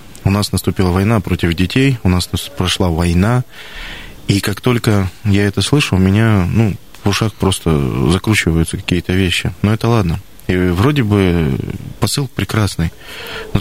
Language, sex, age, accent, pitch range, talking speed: Russian, male, 20-39, native, 90-115 Hz, 150 wpm